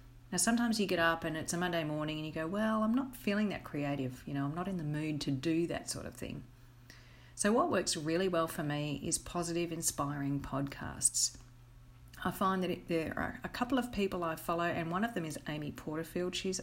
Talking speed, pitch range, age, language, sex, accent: 225 wpm, 140-185 Hz, 40-59, English, female, Australian